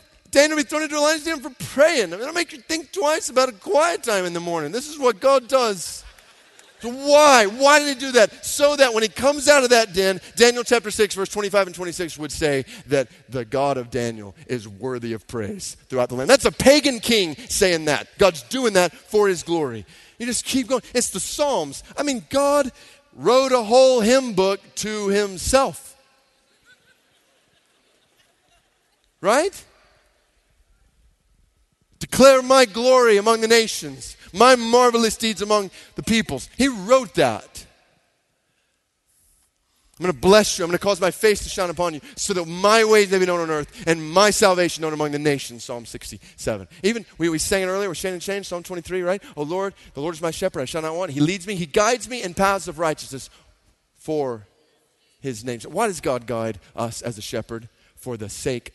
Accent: American